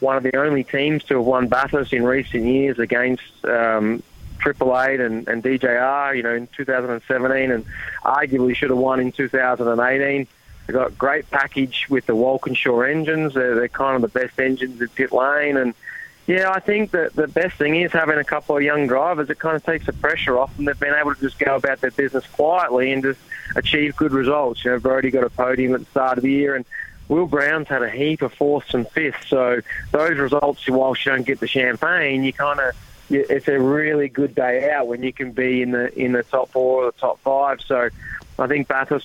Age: 20-39